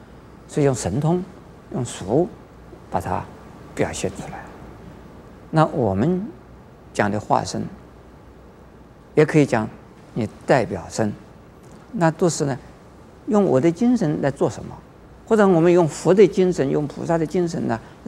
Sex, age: male, 50-69